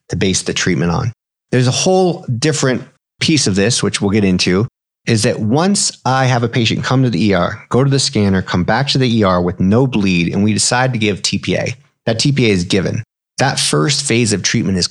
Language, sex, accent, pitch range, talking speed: English, male, American, 100-125 Hz, 220 wpm